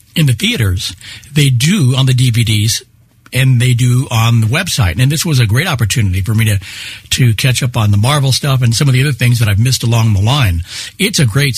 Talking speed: 235 wpm